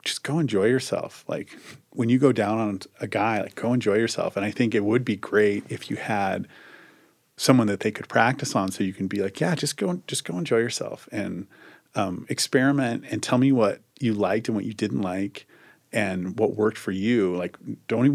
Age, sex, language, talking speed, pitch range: 30-49, male, English, 220 wpm, 95-110 Hz